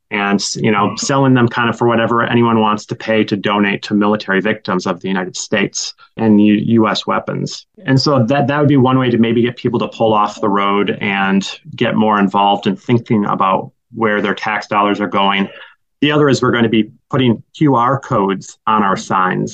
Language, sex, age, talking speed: English, male, 30-49, 210 wpm